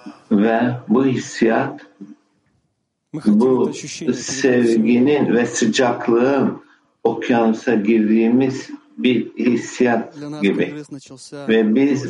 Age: 60-79